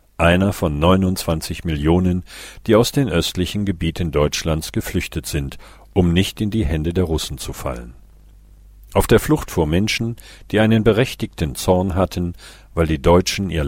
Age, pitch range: 50-69, 80-105 Hz